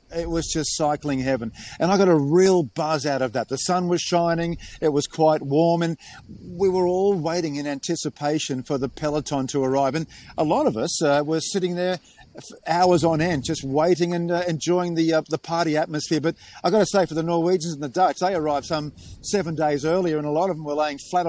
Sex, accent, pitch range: male, Australian, 140-175 Hz